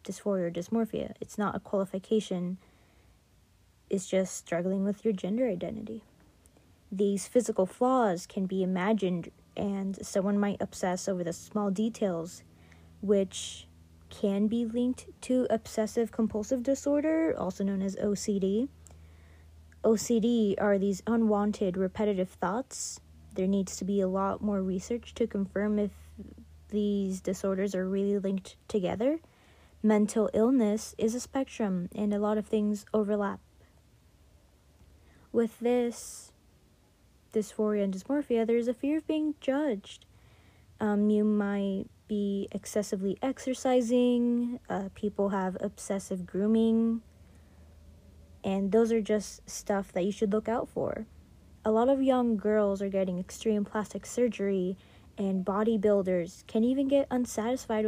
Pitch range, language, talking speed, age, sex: 180-225 Hz, English, 130 wpm, 20-39, female